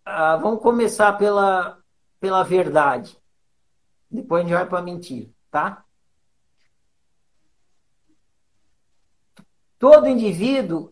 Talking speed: 90 wpm